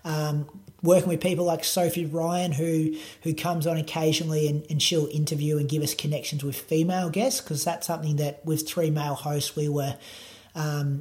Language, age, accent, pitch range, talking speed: English, 30-49, Australian, 145-165 Hz, 185 wpm